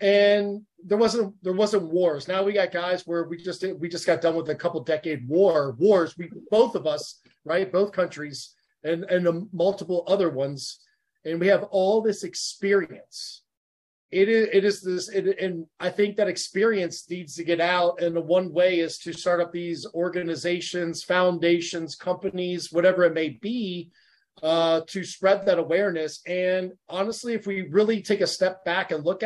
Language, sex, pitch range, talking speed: English, male, 165-195 Hz, 180 wpm